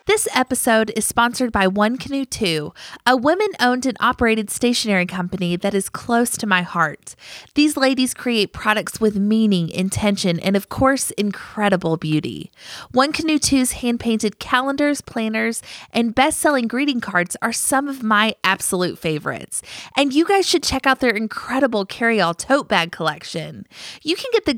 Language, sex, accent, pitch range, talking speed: English, female, American, 185-250 Hz, 155 wpm